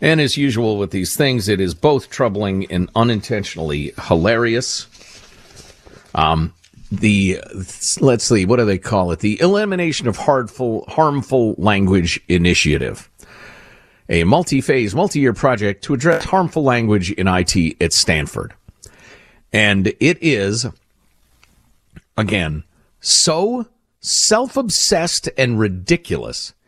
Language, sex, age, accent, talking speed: English, male, 50-69, American, 115 wpm